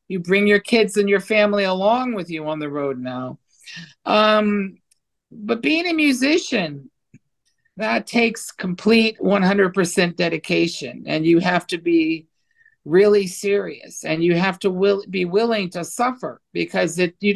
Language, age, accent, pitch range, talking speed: English, 50-69, American, 170-210 Hz, 140 wpm